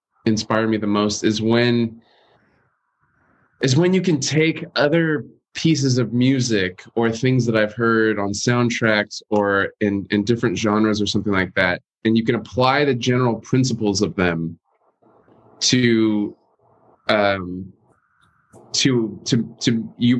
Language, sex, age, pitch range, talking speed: English, male, 20-39, 100-125 Hz, 135 wpm